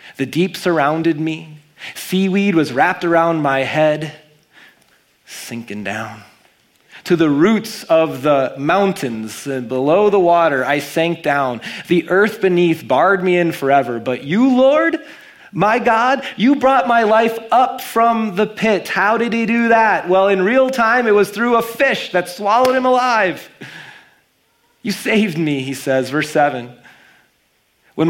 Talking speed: 150 wpm